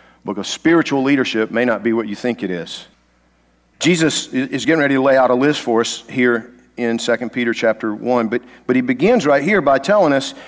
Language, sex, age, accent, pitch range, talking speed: English, male, 50-69, American, 120-170 Hz, 210 wpm